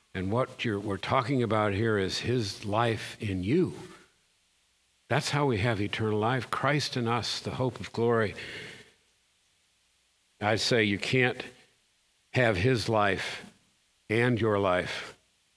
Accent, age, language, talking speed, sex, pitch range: American, 60-79, English, 130 wpm, male, 110-140 Hz